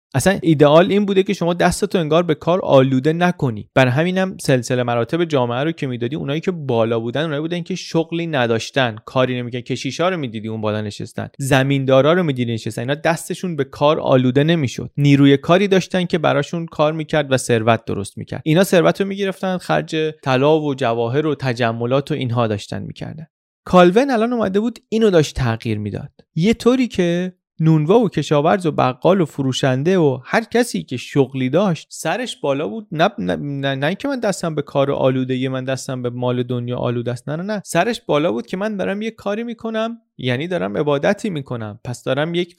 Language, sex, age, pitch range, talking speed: Persian, male, 30-49, 125-170 Hz, 195 wpm